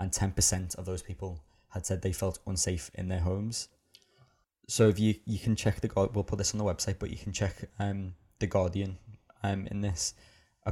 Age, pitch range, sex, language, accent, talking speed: 20-39, 90-100 Hz, male, English, British, 205 wpm